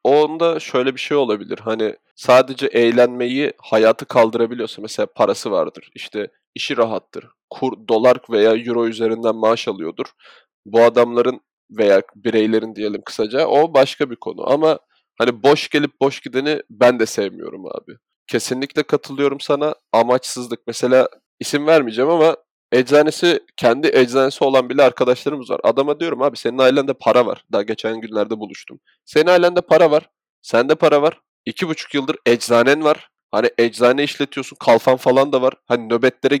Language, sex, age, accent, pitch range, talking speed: Turkish, male, 20-39, native, 115-140 Hz, 150 wpm